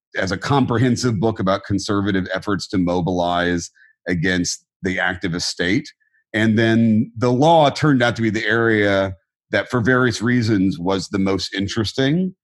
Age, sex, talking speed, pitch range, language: 40-59, male, 150 wpm, 100-130 Hz, English